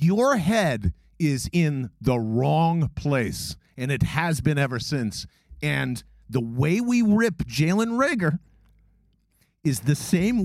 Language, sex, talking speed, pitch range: English, male, 130 wpm, 145-215 Hz